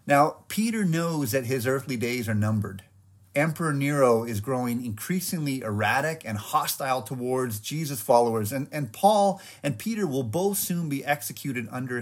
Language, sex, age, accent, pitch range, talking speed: English, male, 30-49, American, 110-160 Hz, 155 wpm